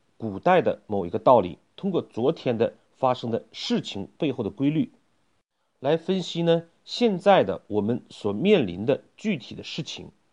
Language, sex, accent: Chinese, male, native